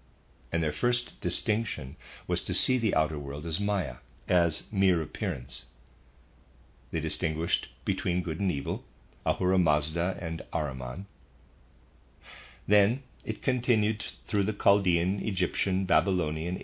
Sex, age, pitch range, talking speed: male, 50-69, 70-95 Hz, 110 wpm